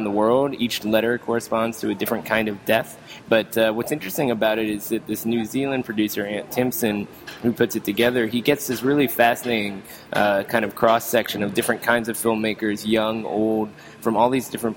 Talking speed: 200 wpm